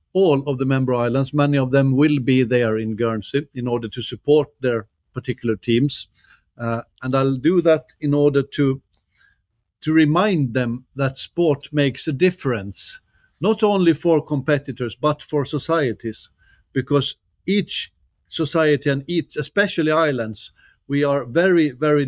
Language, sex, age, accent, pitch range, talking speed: English, male, 50-69, Swedish, 125-150 Hz, 145 wpm